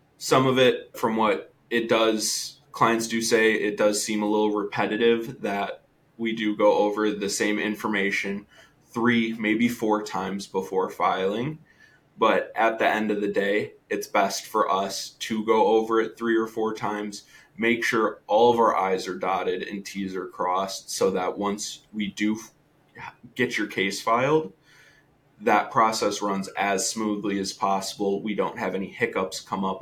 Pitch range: 100-120 Hz